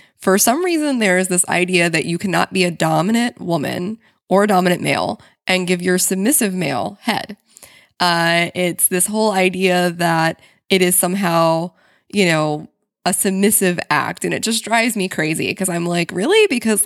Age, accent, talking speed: 20-39, American, 175 wpm